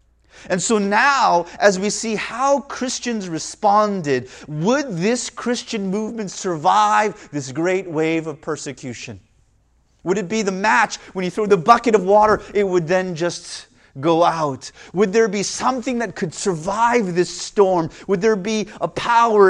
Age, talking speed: 30-49, 155 wpm